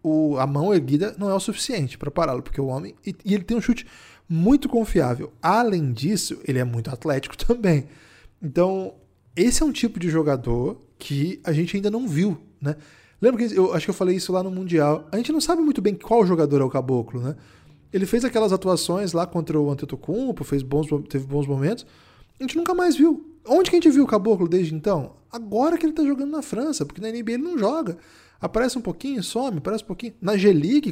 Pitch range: 145-225 Hz